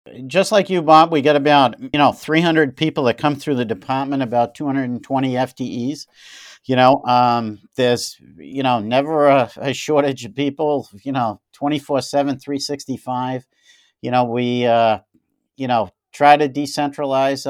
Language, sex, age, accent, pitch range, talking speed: English, male, 50-69, American, 120-140 Hz, 145 wpm